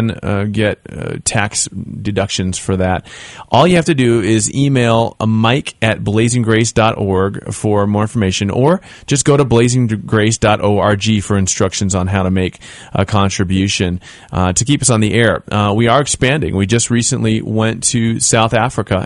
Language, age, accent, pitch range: English, 30-49, American, 95-120 Hz